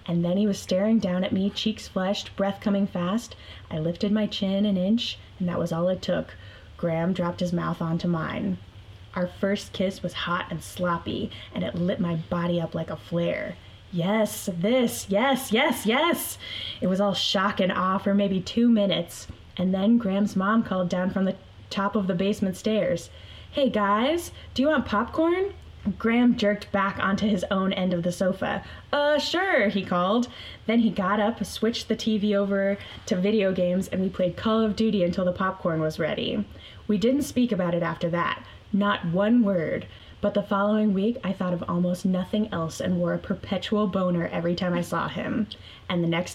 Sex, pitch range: female, 175-210 Hz